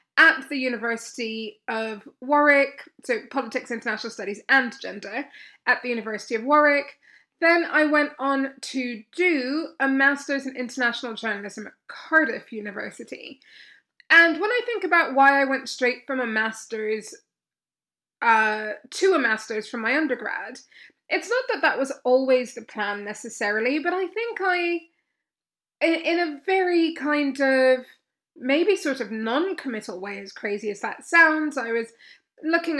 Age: 20-39